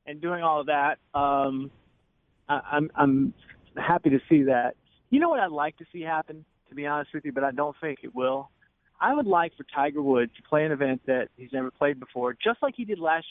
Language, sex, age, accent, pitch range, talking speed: English, male, 30-49, American, 140-190 Hz, 235 wpm